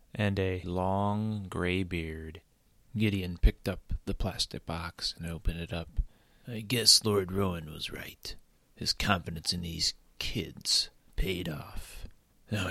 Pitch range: 90-105 Hz